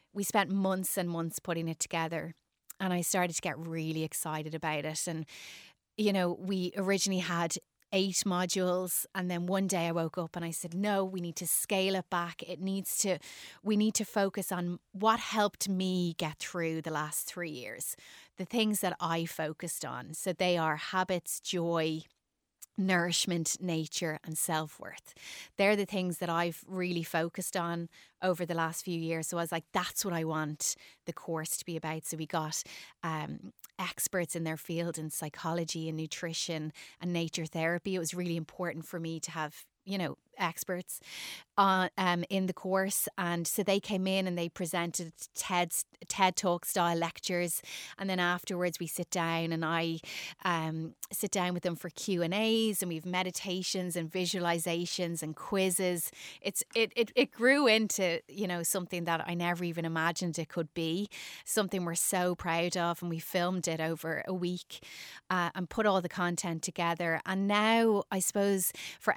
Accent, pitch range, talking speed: Irish, 165-190 Hz, 180 wpm